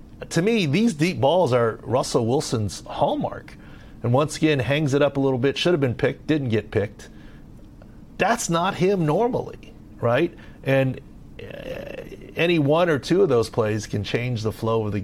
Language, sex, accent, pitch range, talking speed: English, male, American, 100-130 Hz, 175 wpm